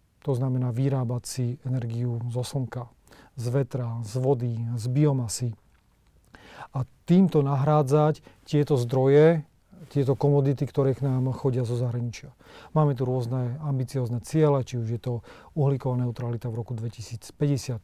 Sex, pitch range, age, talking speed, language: male, 120-140 Hz, 40-59, 135 wpm, Slovak